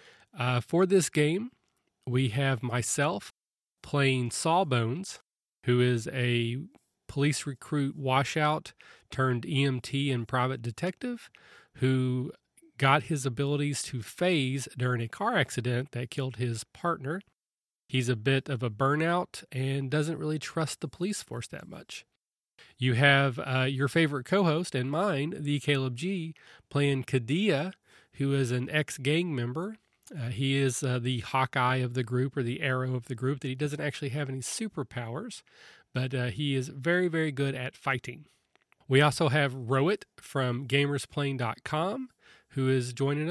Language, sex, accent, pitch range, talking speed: English, male, American, 125-155 Hz, 150 wpm